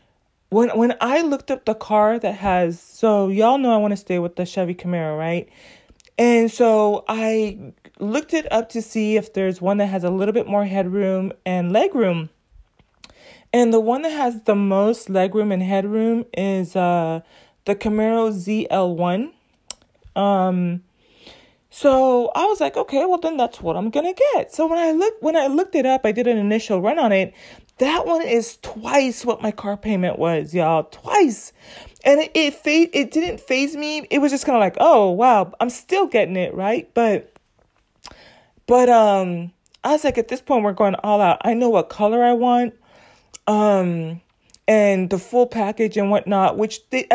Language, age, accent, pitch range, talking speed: English, 30-49, American, 190-240 Hz, 185 wpm